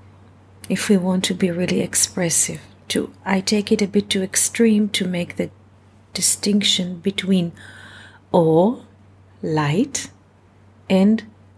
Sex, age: female, 40-59